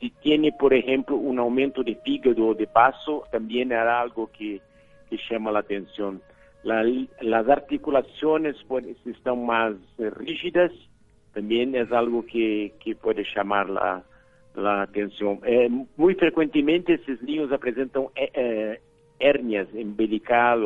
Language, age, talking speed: Spanish, 50-69, 135 wpm